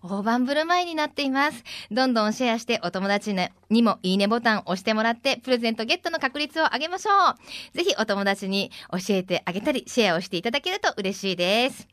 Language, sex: Japanese, female